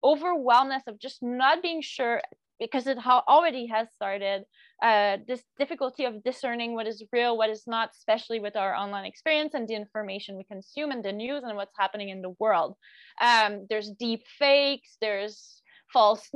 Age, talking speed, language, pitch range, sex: 20-39, 170 wpm, English, 210-265 Hz, female